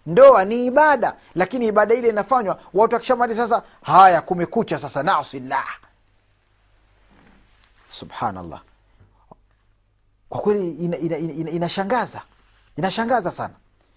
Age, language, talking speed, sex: 40-59, Swahili, 105 wpm, male